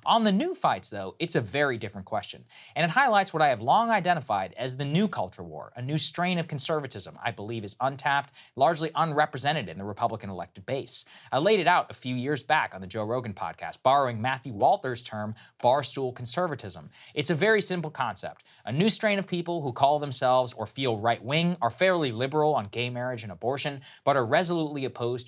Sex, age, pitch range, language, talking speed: male, 20-39, 115-155 Hz, English, 205 wpm